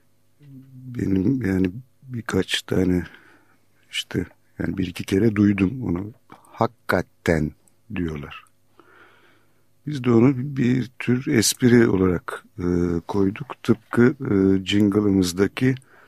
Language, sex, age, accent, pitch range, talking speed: Turkish, male, 60-79, native, 90-115 Hz, 95 wpm